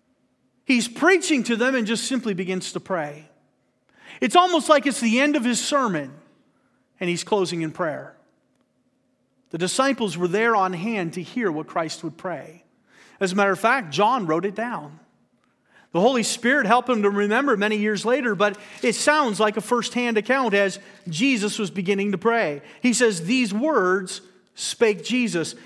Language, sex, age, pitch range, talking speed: English, male, 40-59, 185-250 Hz, 175 wpm